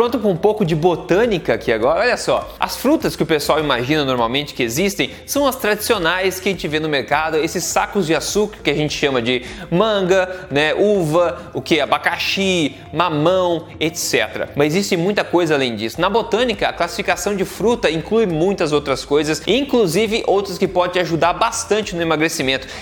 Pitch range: 150-215 Hz